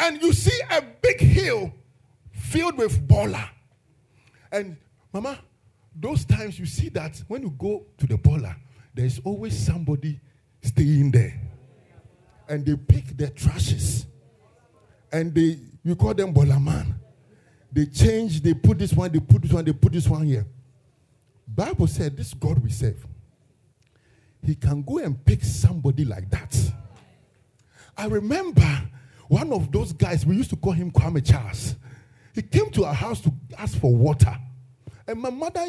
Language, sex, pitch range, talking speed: English, male, 110-140 Hz, 155 wpm